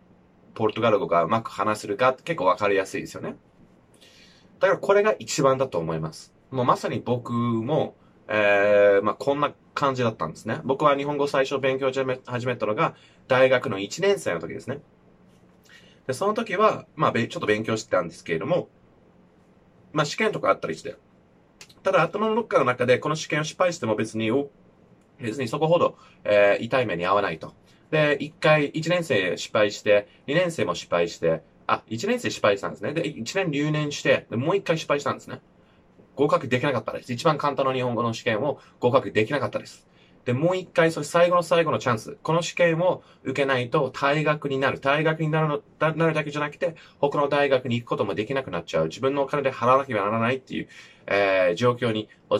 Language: Japanese